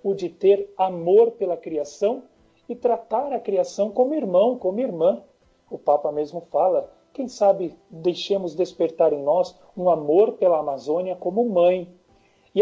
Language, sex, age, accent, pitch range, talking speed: Portuguese, male, 40-59, Brazilian, 165-230 Hz, 145 wpm